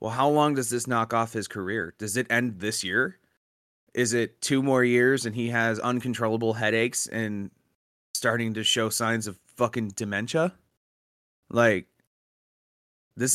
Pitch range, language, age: 115-155 Hz, English, 20-39